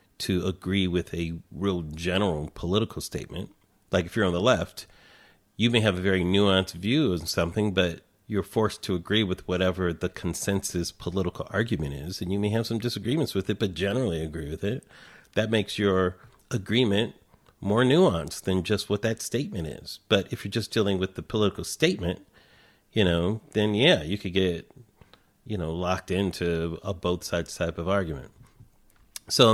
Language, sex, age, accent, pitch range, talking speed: English, male, 40-59, American, 90-115 Hz, 175 wpm